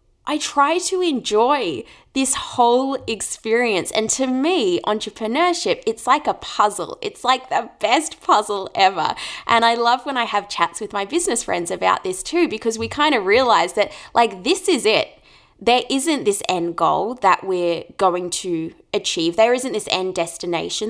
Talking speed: 170 wpm